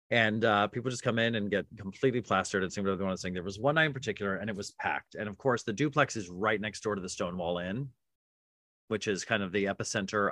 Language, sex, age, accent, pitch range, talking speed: English, male, 30-49, American, 100-130 Hz, 270 wpm